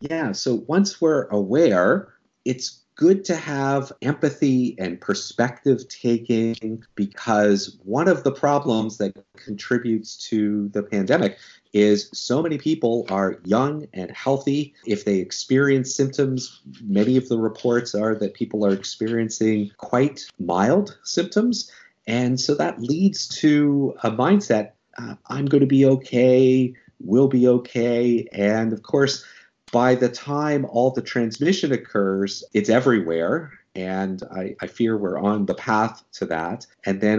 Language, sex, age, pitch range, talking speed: English, male, 30-49, 105-135 Hz, 140 wpm